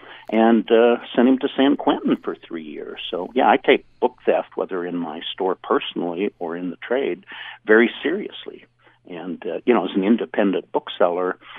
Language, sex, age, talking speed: English, male, 60-79, 180 wpm